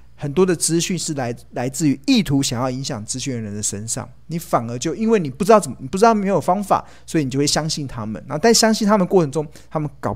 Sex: male